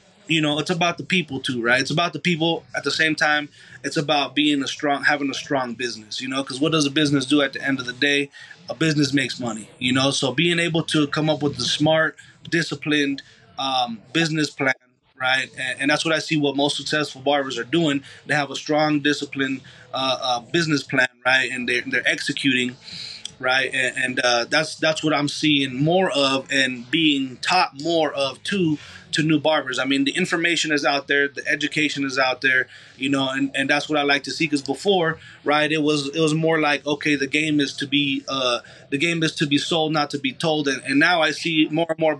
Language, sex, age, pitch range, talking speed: English, male, 30-49, 135-155 Hz, 230 wpm